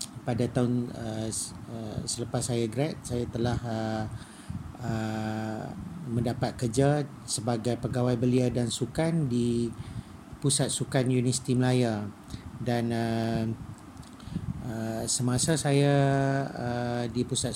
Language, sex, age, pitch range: Malay, male, 40-59, 110-125 Hz